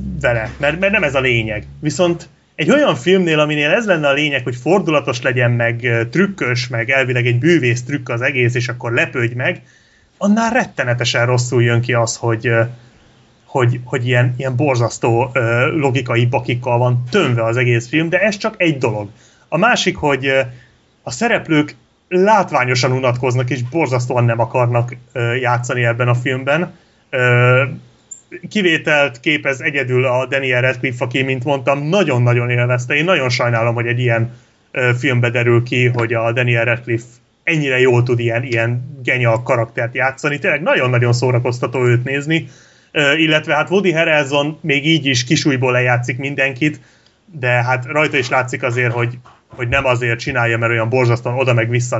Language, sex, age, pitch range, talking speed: Hungarian, male, 30-49, 120-140 Hz, 160 wpm